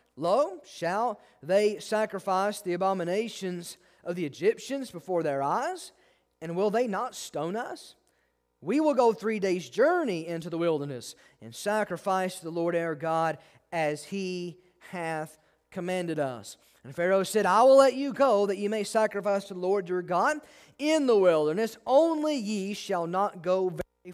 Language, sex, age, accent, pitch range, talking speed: English, male, 40-59, American, 170-230 Hz, 160 wpm